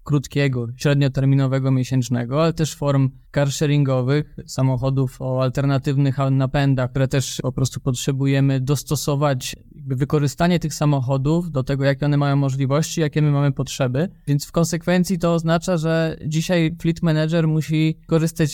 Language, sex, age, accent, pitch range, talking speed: Polish, male, 20-39, native, 135-160 Hz, 135 wpm